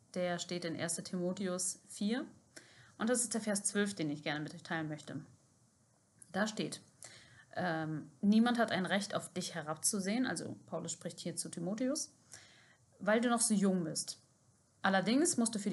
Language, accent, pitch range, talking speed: German, German, 160-210 Hz, 170 wpm